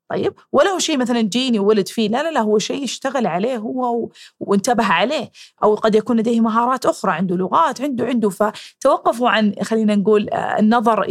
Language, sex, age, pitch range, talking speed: Arabic, female, 30-49, 205-245 Hz, 180 wpm